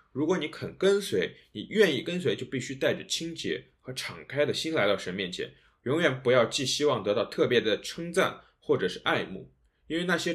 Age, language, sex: 20-39, Chinese, male